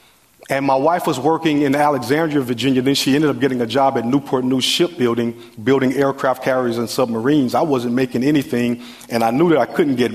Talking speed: 205 wpm